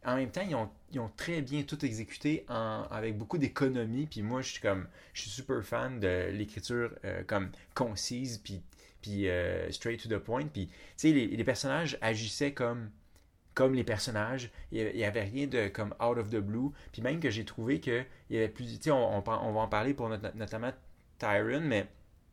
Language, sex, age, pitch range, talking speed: French, male, 30-49, 105-130 Hz, 210 wpm